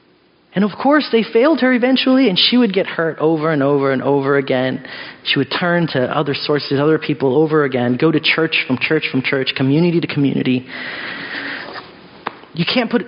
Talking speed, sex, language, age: 190 wpm, male, English, 30-49